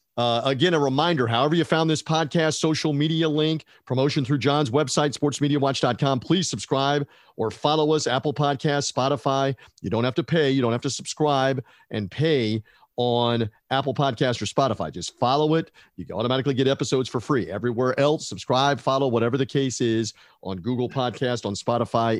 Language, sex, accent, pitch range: English, male, American, 120-155 Hz